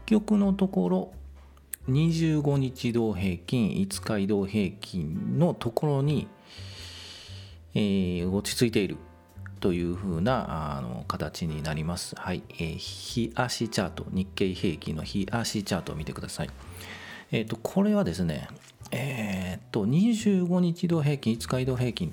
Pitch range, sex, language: 90-130 Hz, male, Japanese